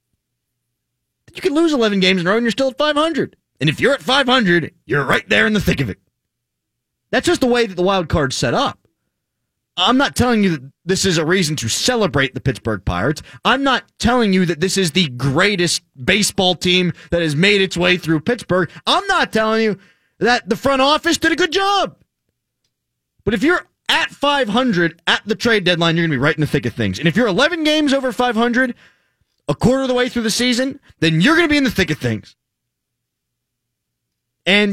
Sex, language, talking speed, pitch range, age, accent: male, English, 215 wpm, 155-245 Hz, 30-49, American